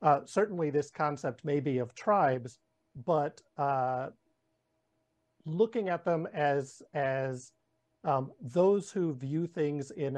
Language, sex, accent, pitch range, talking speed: English, male, American, 135-165 Hz, 125 wpm